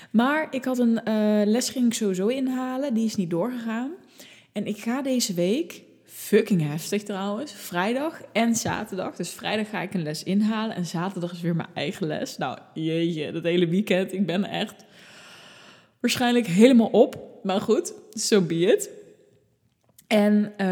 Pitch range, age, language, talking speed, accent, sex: 180-215 Hz, 20-39, Dutch, 165 wpm, Dutch, female